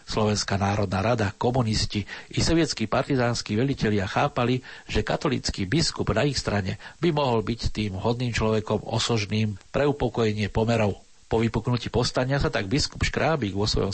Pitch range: 105-120 Hz